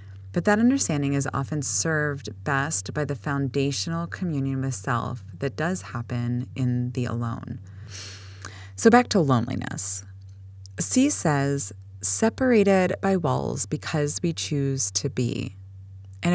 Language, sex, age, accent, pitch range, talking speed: English, female, 20-39, American, 115-150 Hz, 125 wpm